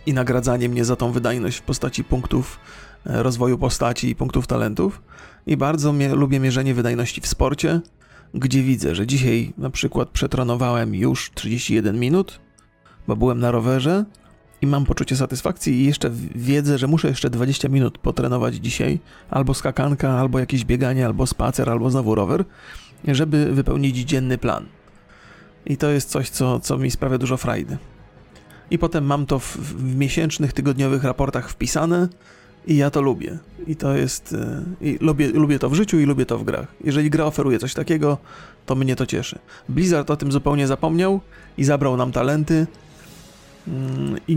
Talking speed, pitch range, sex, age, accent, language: 160 wpm, 125-150 Hz, male, 30-49, native, Polish